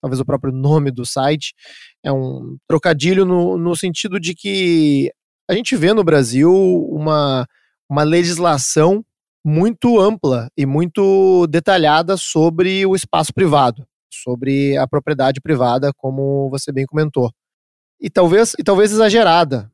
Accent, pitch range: Brazilian, 140-180 Hz